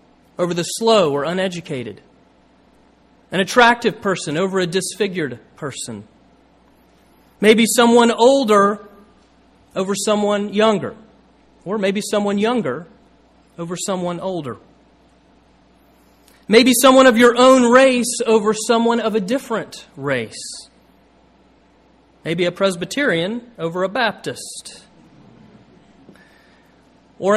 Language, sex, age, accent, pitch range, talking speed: English, male, 40-59, American, 155-225 Hz, 95 wpm